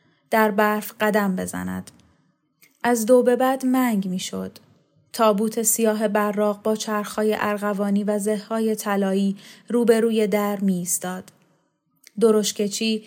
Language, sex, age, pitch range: Persian, female, 10-29, 195-225 Hz